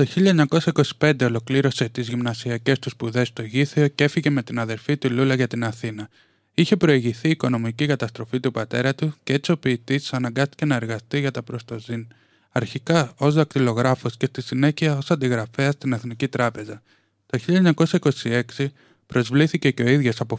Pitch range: 115-145 Hz